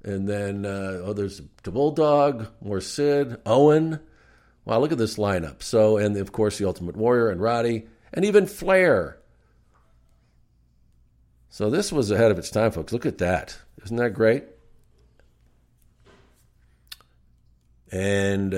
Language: English